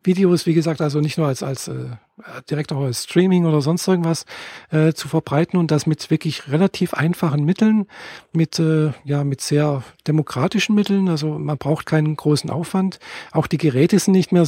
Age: 50-69